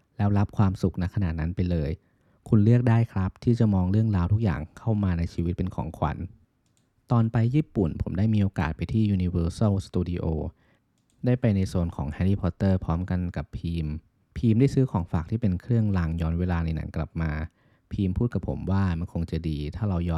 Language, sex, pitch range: Thai, male, 85-110 Hz